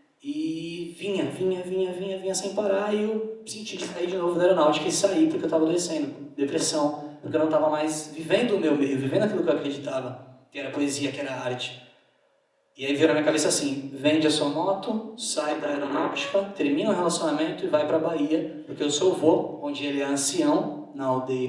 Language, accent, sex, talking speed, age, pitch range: Portuguese, Brazilian, male, 210 wpm, 20-39, 145-195 Hz